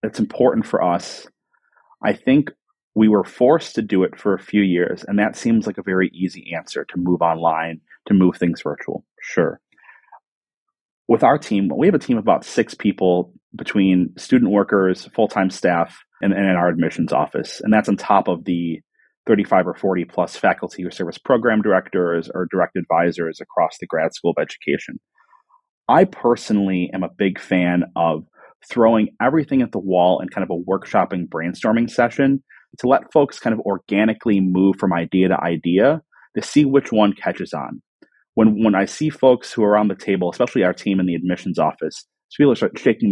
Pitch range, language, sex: 90-110 Hz, English, male